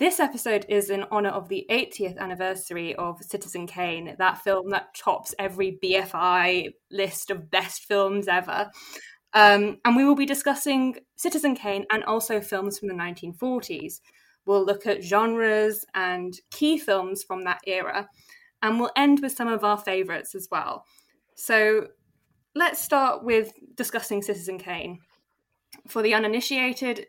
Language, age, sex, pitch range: English, 20-39, female, 190-245 Hz